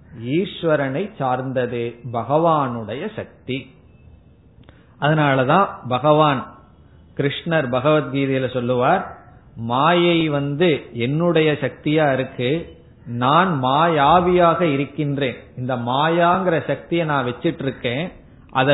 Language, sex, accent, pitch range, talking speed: Tamil, male, native, 130-165 Hz, 75 wpm